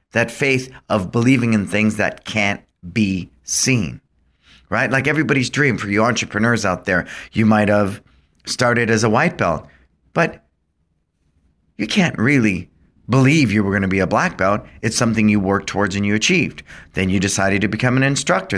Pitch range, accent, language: 90-120 Hz, American, English